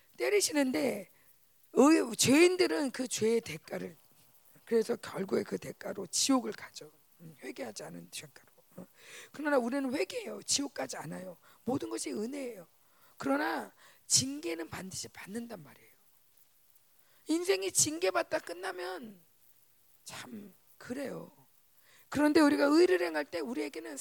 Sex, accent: female, native